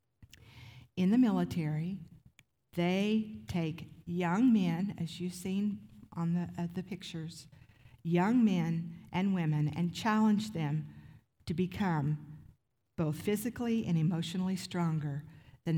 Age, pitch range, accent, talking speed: 50-69, 140-180 Hz, American, 115 wpm